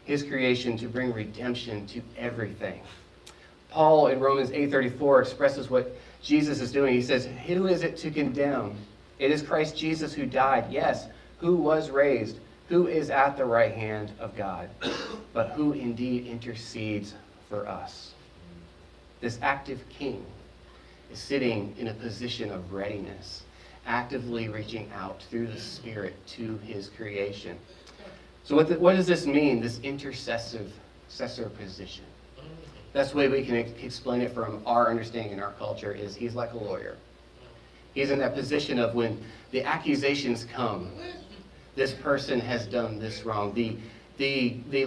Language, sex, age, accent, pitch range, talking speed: English, male, 30-49, American, 110-140 Hz, 150 wpm